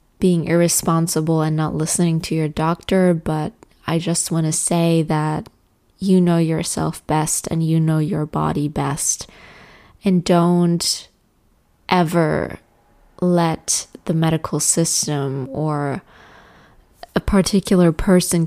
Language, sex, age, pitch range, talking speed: English, female, 20-39, 155-175 Hz, 115 wpm